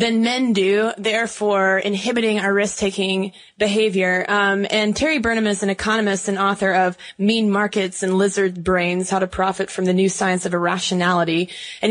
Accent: American